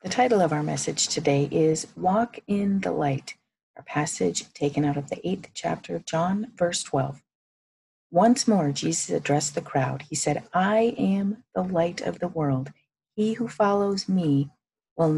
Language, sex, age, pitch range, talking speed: English, female, 40-59, 145-190 Hz, 170 wpm